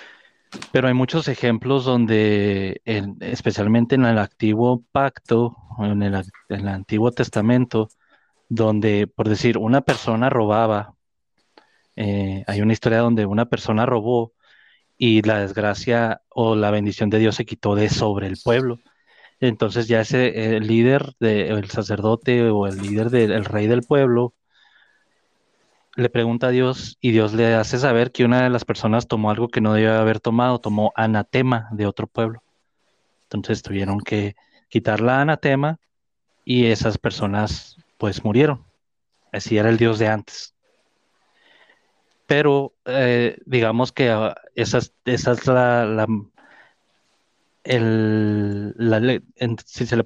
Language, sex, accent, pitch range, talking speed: Spanish, male, Mexican, 105-125 Hz, 135 wpm